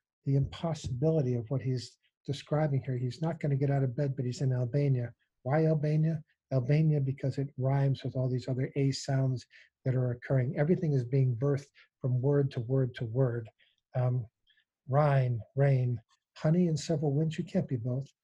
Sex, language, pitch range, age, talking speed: male, English, 130-145 Hz, 50-69, 180 wpm